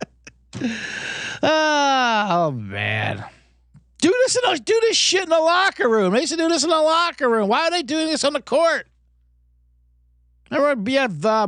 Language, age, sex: English, 50-69, male